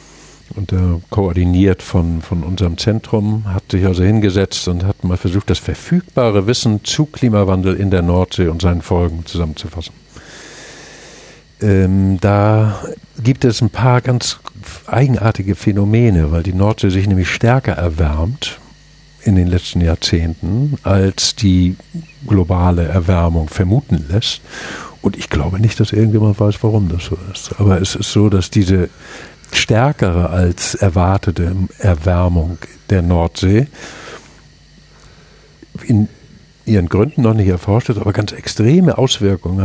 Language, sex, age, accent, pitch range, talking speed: German, male, 50-69, German, 90-110 Hz, 130 wpm